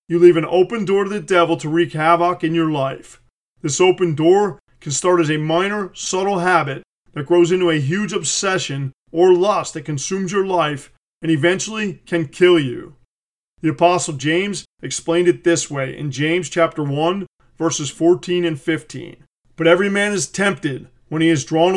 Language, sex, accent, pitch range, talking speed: English, male, American, 155-180 Hz, 180 wpm